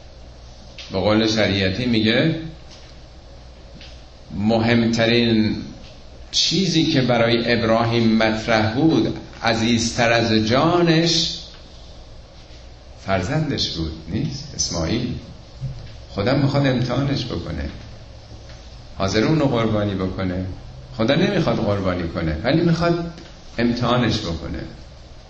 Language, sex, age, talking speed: Persian, male, 50-69, 80 wpm